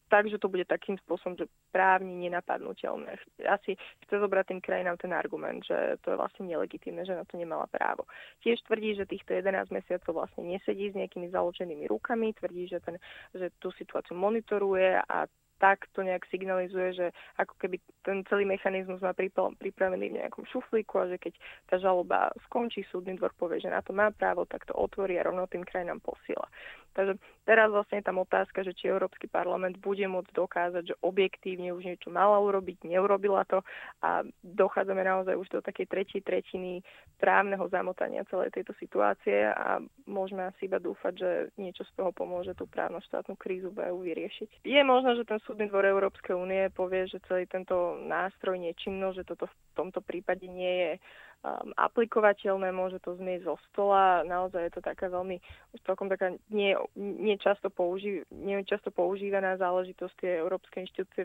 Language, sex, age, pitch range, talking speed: Slovak, female, 20-39, 180-200 Hz, 175 wpm